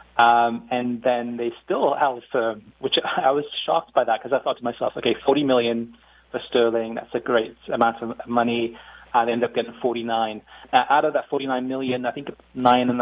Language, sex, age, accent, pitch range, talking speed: English, male, 30-49, British, 120-130 Hz, 205 wpm